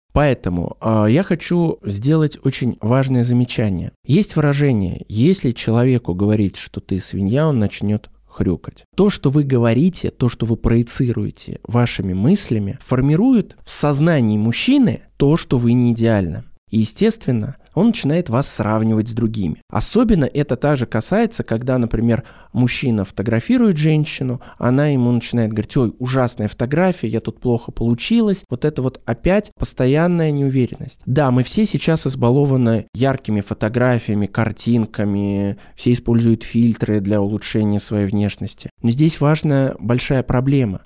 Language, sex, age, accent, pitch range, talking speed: Russian, male, 20-39, native, 110-145 Hz, 140 wpm